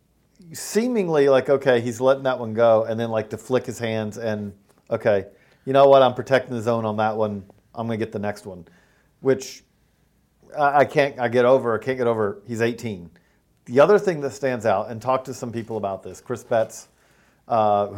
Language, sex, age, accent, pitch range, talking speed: English, male, 40-59, American, 110-130 Hz, 205 wpm